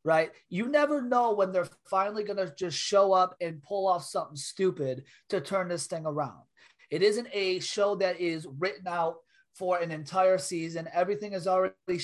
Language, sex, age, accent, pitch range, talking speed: English, male, 30-49, American, 170-200 Hz, 185 wpm